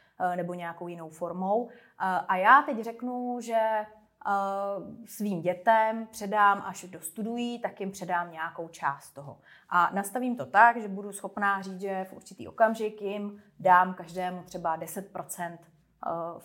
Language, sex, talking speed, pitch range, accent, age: Czech, female, 135 wpm, 175-215 Hz, native, 30-49